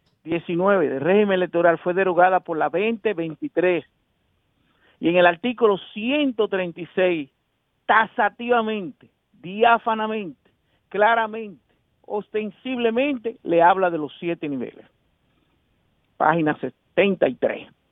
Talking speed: 85 wpm